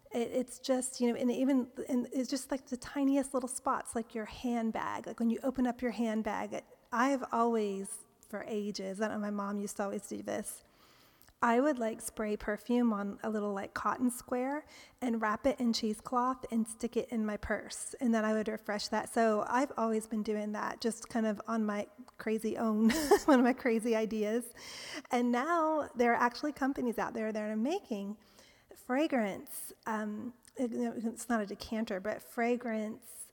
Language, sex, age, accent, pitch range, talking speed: English, female, 30-49, American, 215-250 Hz, 185 wpm